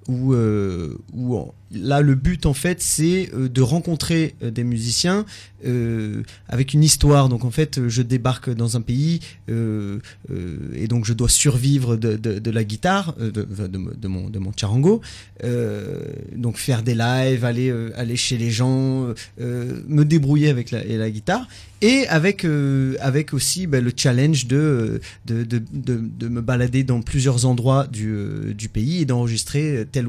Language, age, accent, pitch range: French, 30-49, French, 110-135 Hz